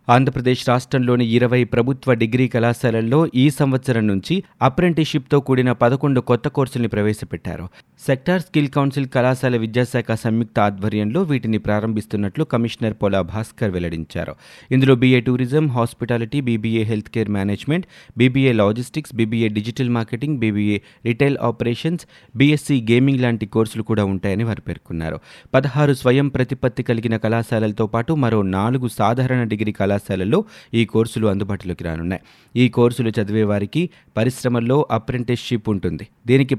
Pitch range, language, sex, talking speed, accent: 110-130 Hz, Telugu, male, 120 wpm, native